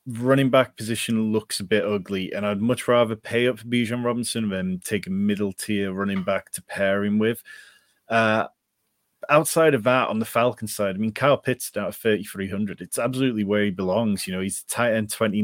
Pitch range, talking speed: 100-120 Hz, 210 wpm